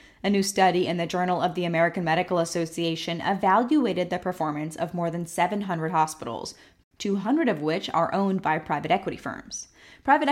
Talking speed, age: 170 wpm, 10-29